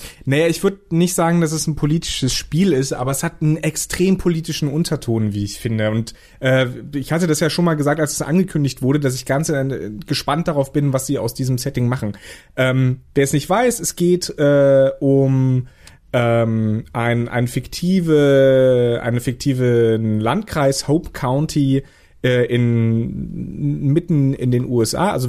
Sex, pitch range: male, 125-160 Hz